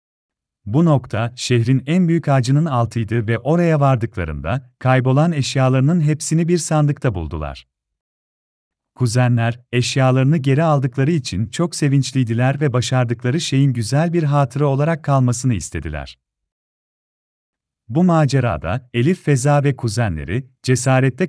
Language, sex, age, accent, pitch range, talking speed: Turkish, male, 40-59, native, 100-145 Hz, 110 wpm